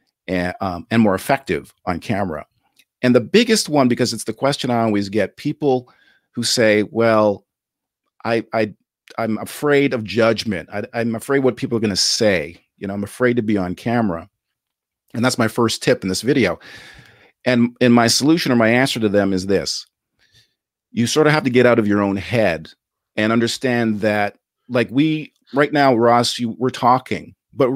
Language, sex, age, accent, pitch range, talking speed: English, male, 50-69, American, 105-130 Hz, 190 wpm